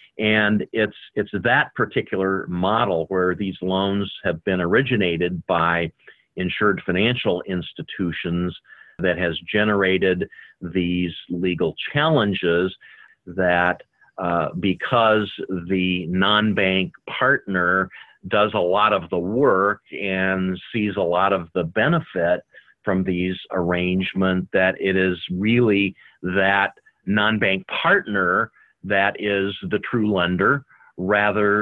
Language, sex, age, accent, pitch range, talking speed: English, male, 50-69, American, 90-105 Hz, 110 wpm